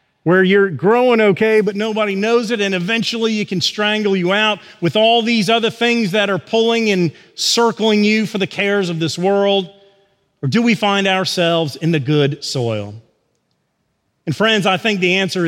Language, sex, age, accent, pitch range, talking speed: English, male, 40-59, American, 175-225 Hz, 180 wpm